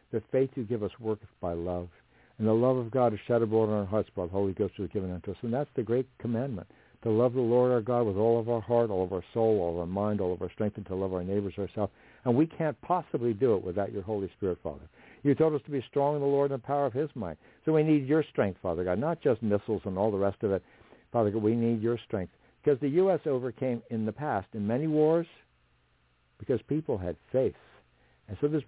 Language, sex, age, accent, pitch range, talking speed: English, male, 60-79, American, 105-140 Hz, 265 wpm